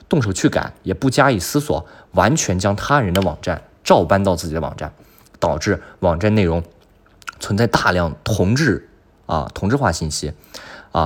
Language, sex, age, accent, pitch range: Chinese, male, 20-39, native, 85-110 Hz